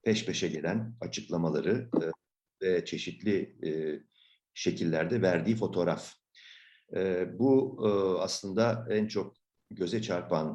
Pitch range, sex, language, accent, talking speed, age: 85-115 Hz, male, Turkish, native, 85 wpm, 50-69